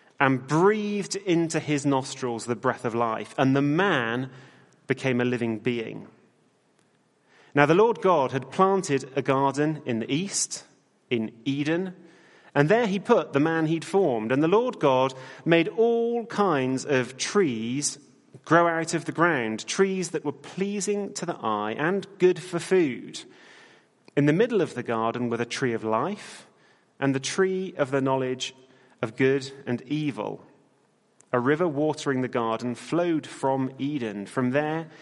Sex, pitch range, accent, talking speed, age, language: male, 125-160 Hz, British, 160 wpm, 30-49, English